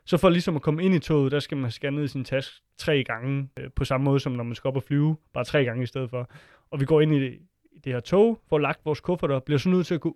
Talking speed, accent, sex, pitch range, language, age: 295 wpm, native, male, 135-165 Hz, Danish, 20-39